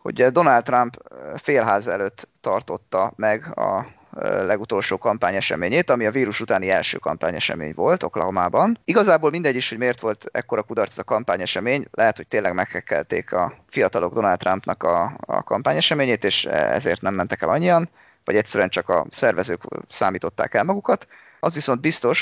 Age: 30-49